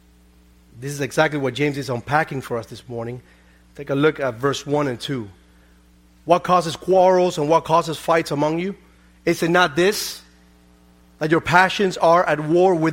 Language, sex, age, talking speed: English, male, 30-49, 175 wpm